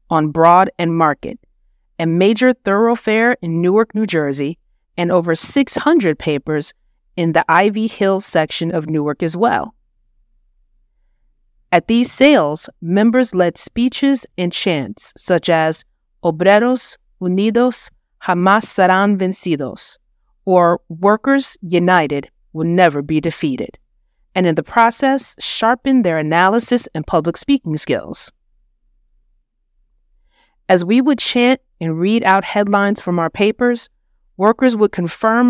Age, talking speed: 30-49, 120 wpm